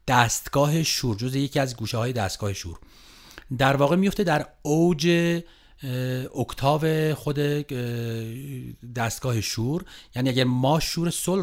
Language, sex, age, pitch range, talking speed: Persian, male, 40-59, 110-150 Hz, 120 wpm